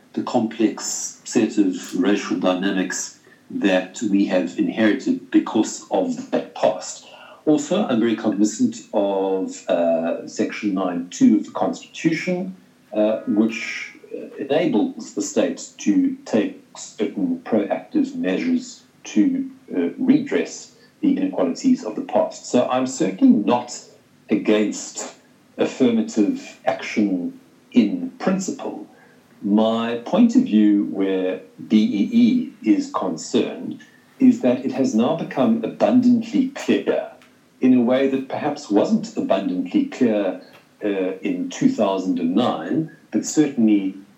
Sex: male